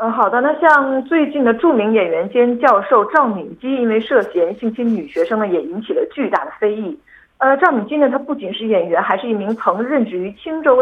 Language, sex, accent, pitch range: Korean, female, Chinese, 210-320 Hz